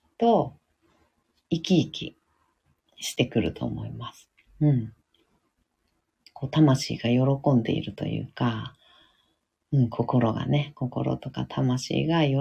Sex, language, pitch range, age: female, Japanese, 115-175 Hz, 40-59